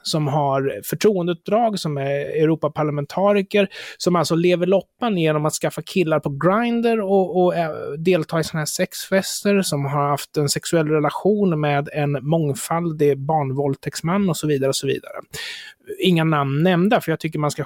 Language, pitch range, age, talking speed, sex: Swedish, 140-185 Hz, 30-49, 160 wpm, male